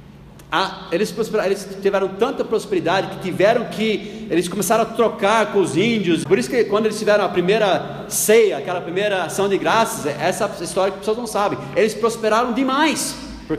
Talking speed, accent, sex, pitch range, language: 180 wpm, Brazilian, male, 145-195 Hz, Portuguese